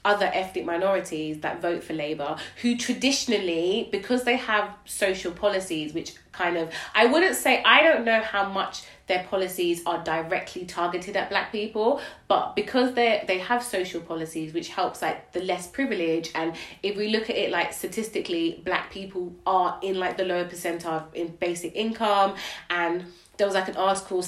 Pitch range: 175-215 Hz